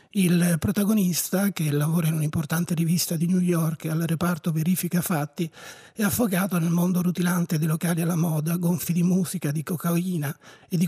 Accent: native